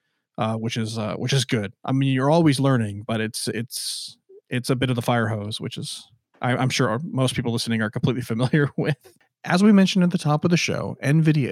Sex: male